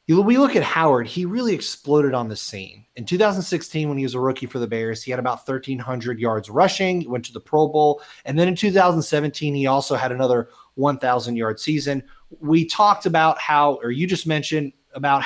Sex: male